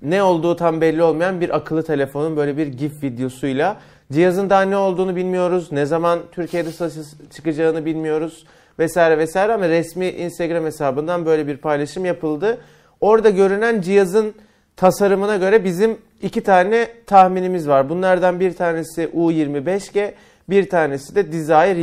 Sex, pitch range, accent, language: male, 145-185 Hz, native, Turkish